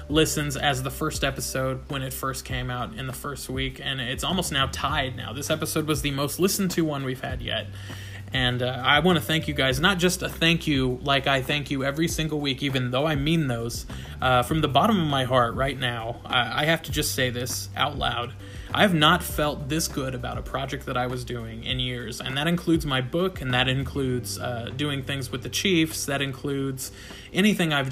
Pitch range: 125-150 Hz